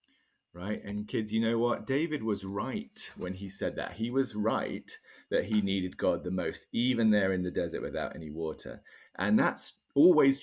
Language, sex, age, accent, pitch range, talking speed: English, male, 30-49, British, 90-115 Hz, 190 wpm